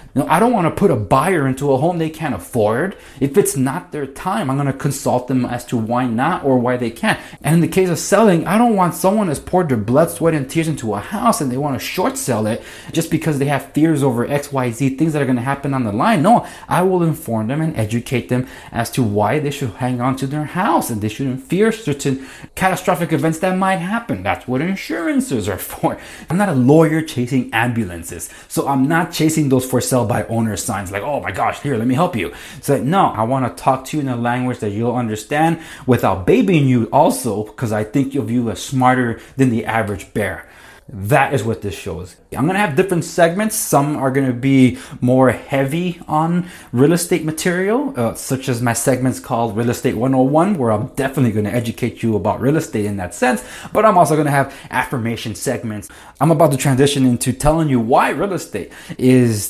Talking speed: 230 wpm